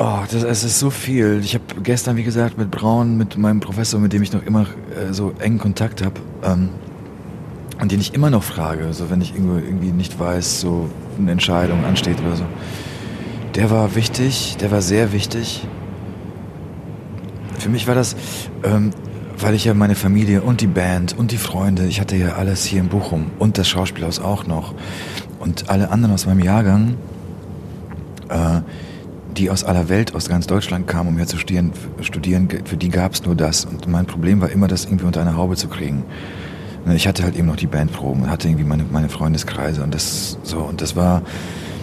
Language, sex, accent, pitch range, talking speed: German, male, German, 85-105 Hz, 195 wpm